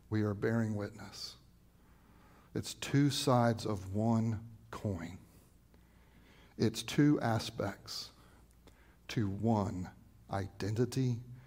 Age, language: 60-79, English